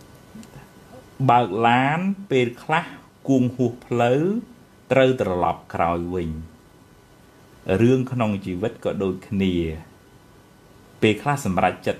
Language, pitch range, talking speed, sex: English, 90-125 Hz, 60 wpm, male